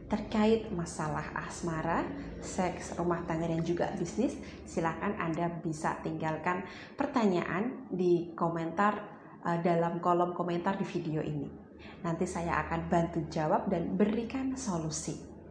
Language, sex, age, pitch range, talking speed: Indonesian, female, 20-39, 175-215 Hz, 115 wpm